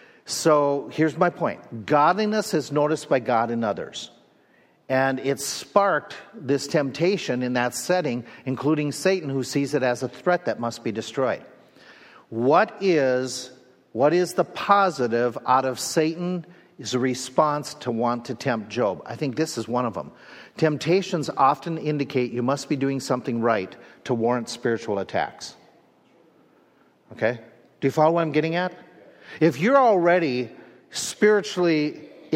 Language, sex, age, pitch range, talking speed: English, male, 50-69, 125-165 Hz, 145 wpm